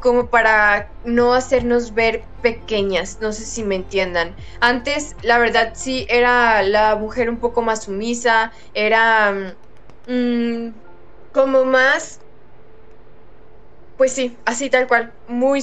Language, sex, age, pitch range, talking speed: Spanish, female, 10-29, 220-245 Hz, 120 wpm